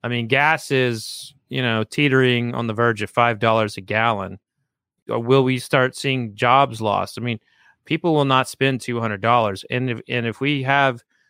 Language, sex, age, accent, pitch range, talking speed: English, male, 30-49, American, 110-135 Hz, 195 wpm